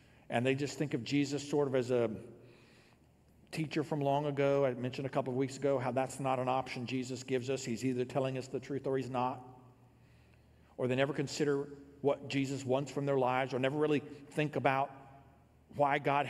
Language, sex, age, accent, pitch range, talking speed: English, male, 50-69, American, 130-155 Hz, 205 wpm